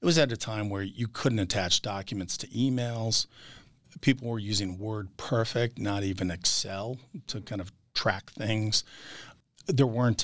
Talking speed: 160 wpm